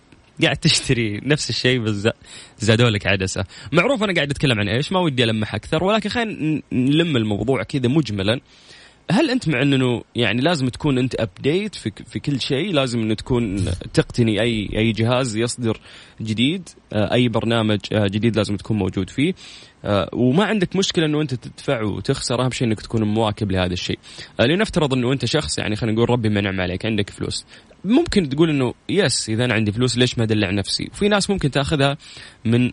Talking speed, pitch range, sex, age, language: 170 wpm, 105-140 Hz, male, 20-39, Arabic